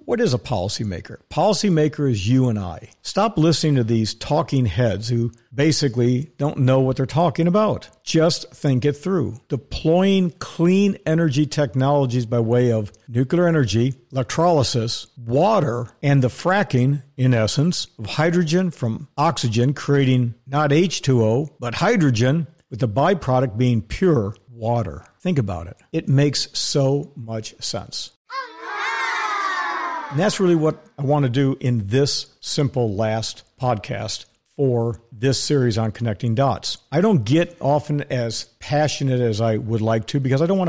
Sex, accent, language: male, American, English